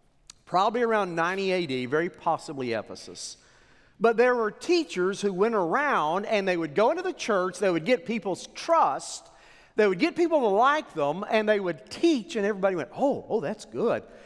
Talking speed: 185 wpm